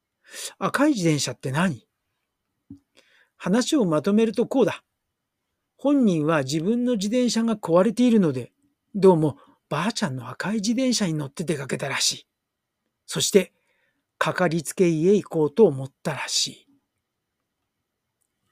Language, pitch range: Japanese, 155-230 Hz